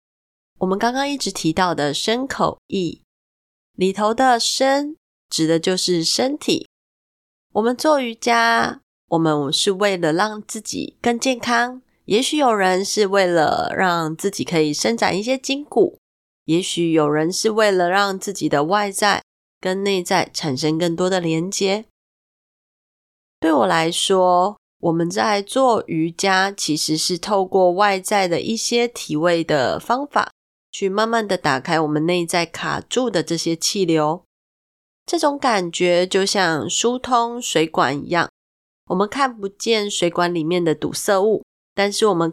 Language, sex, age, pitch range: Chinese, female, 20-39, 170-235 Hz